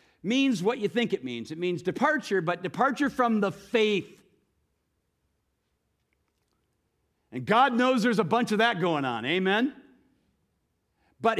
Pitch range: 175-230 Hz